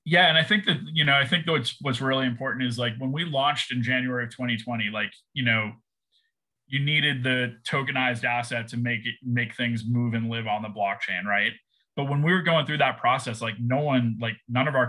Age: 20-39